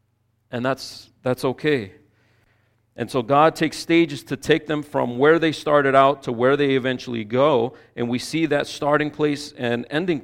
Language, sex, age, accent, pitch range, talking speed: English, male, 40-59, American, 115-150 Hz, 175 wpm